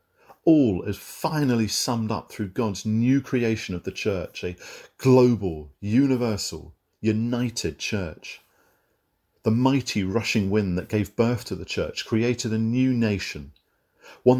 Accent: British